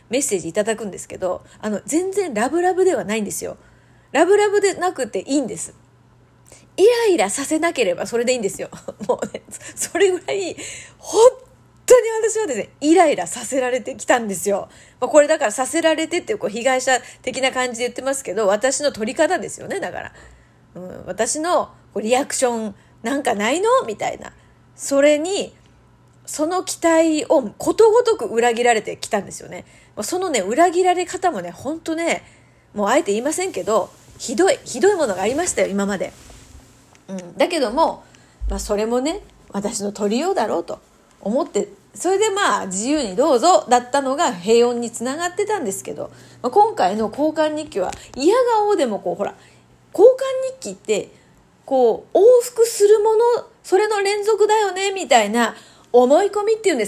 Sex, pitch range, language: female, 235-395 Hz, Japanese